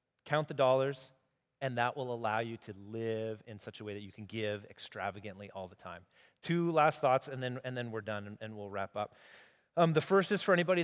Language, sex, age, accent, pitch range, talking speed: English, male, 30-49, American, 120-165 Hz, 235 wpm